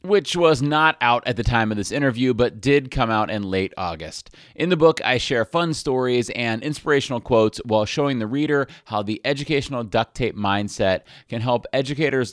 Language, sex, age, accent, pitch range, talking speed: English, male, 30-49, American, 105-140 Hz, 195 wpm